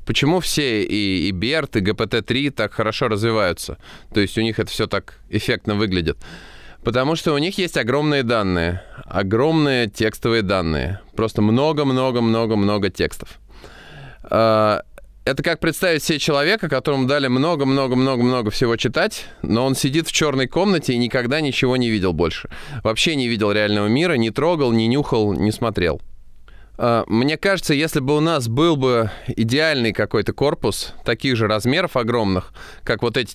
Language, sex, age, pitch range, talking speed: Russian, male, 20-39, 110-145 Hz, 150 wpm